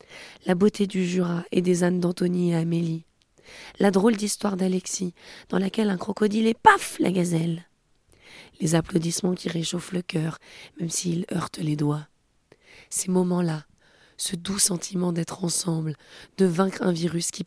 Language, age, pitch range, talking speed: French, 20-39, 165-190 Hz, 155 wpm